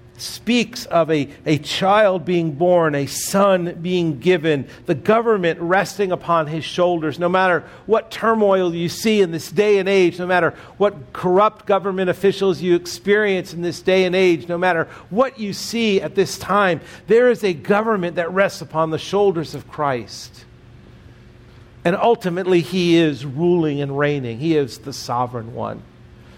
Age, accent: 50-69, American